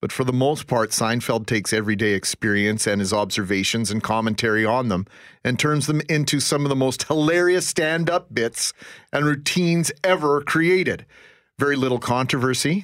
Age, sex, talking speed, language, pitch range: 40-59, male, 160 wpm, English, 115-150 Hz